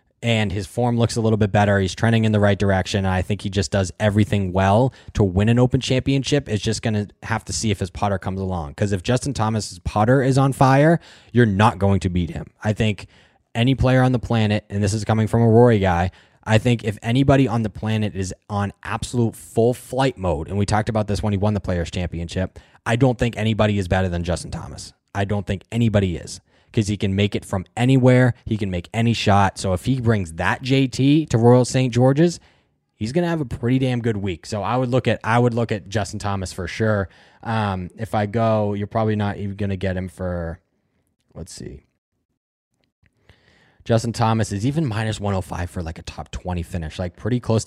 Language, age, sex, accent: English, 10-29, male, American